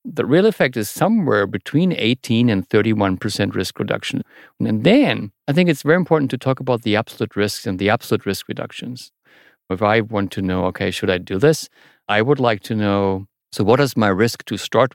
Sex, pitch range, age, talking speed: male, 100-130 Hz, 50-69, 205 wpm